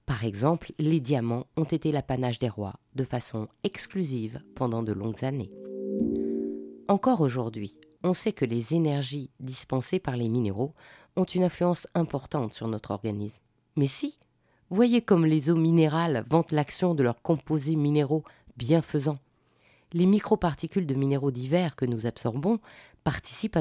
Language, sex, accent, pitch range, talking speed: French, female, French, 125-175 Hz, 145 wpm